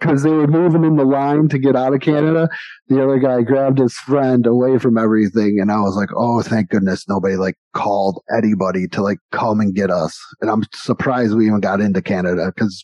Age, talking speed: 30-49, 220 wpm